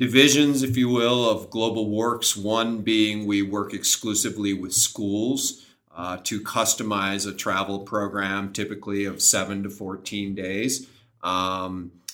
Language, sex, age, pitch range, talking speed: English, male, 40-59, 95-110 Hz, 135 wpm